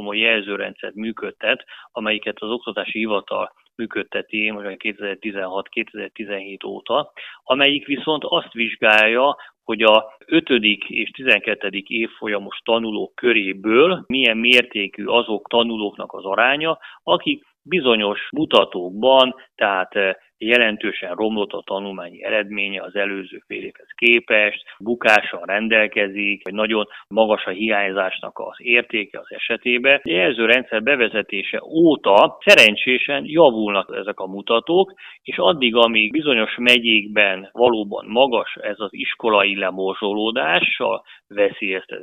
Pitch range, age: 100-120 Hz, 30-49